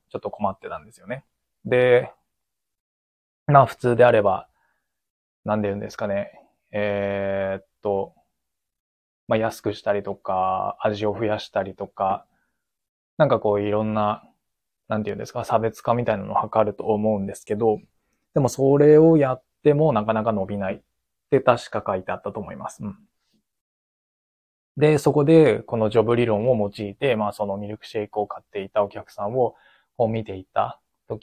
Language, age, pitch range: Japanese, 20-39, 105-125 Hz